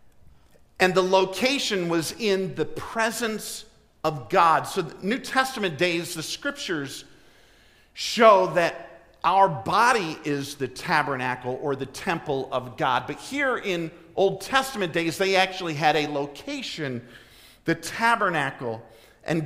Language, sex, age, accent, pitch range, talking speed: English, male, 50-69, American, 150-205 Hz, 130 wpm